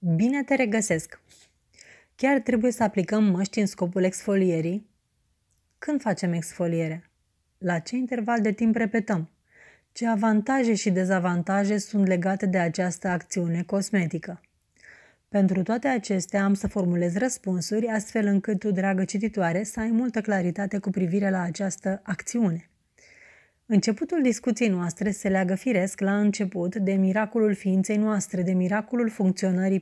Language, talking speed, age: Romanian, 135 wpm, 30-49